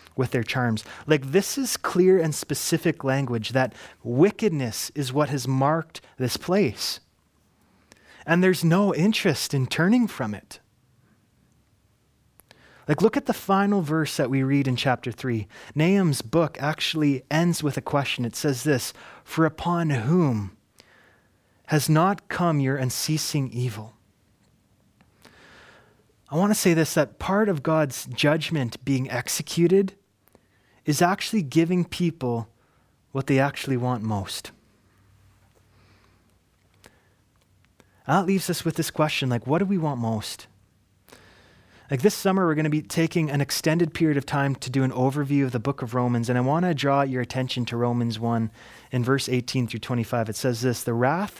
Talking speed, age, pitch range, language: 150 wpm, 30-49, 120-160 Hz, English